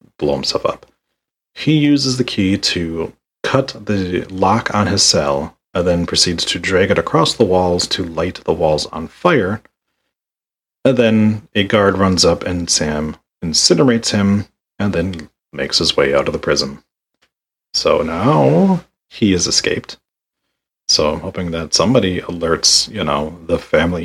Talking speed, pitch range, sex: 155 wpm, 85-115 Hz, male